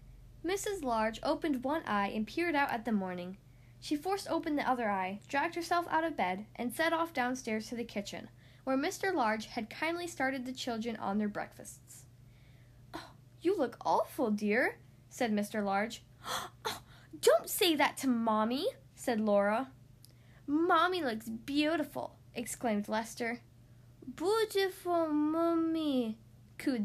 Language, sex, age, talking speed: English, female, 10-29, 140 wpm